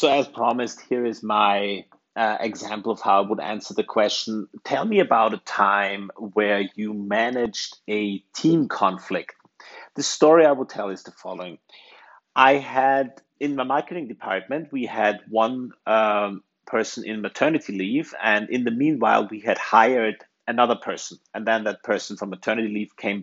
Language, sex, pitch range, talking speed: English, male, 105-145 Hz, 170 wpm